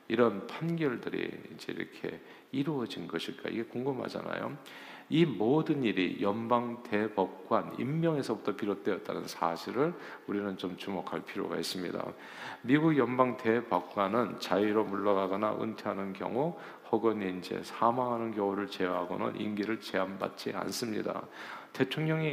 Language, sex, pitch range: Korean, male, 95-120 Hz